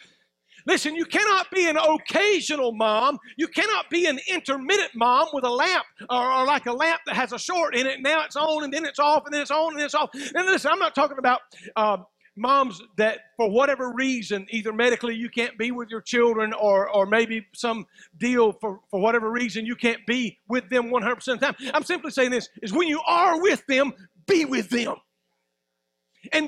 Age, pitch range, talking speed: 50-69, 230-325 Hz, 215 wpm